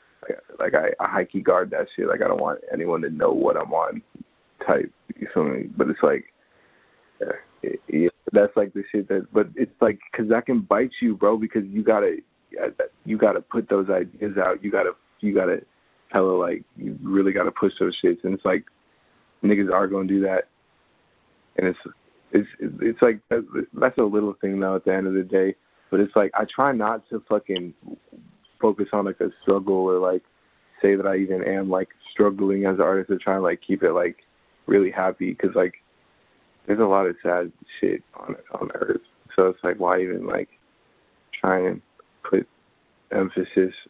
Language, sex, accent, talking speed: English, male, American, 195 wpm